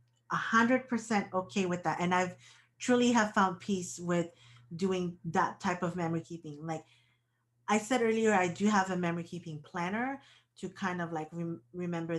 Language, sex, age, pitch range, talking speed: English, female, 30-49, 170-215 Hz, 165 wpm